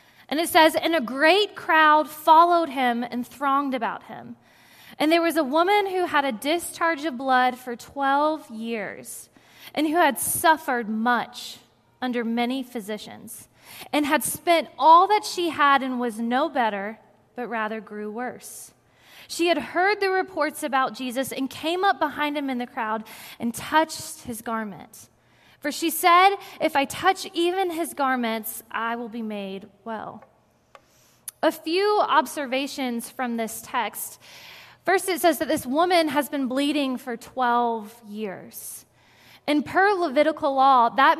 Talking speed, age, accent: 155 wpm, 20-39, American